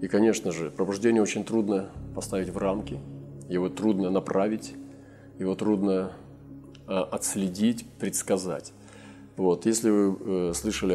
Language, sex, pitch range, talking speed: Russian, male, 85-105 Hz, 110 wpm